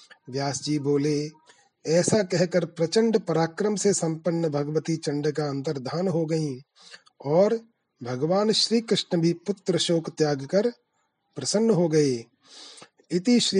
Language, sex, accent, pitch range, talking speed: Hindi, male, native, 150-190 Hz, 120 wpm